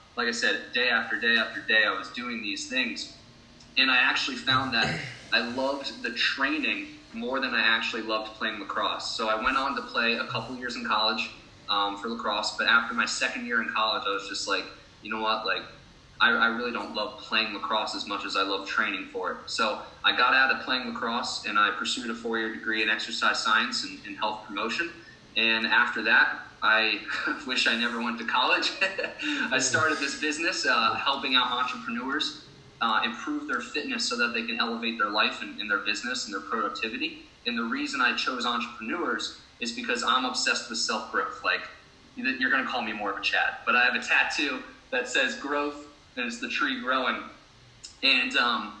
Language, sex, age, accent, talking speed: English, male, 20-39, American, 205 wpm